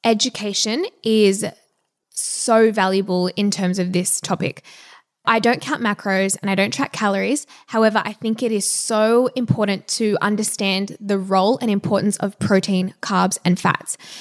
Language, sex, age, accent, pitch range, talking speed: English, female, 10-29, Australian, 195-225 Hz, 150 wpm